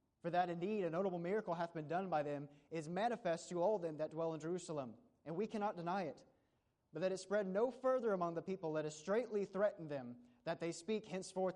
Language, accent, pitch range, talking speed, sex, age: English, American, 150-195 Hz, 225 wpm, male, 30-49